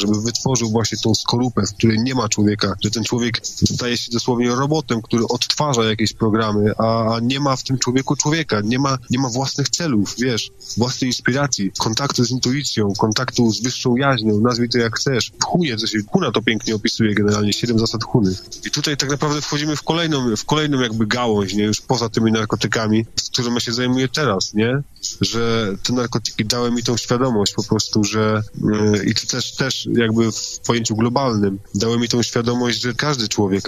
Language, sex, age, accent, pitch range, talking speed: Polish, male, 20-39, native, 105-125 Hz, 190 wpm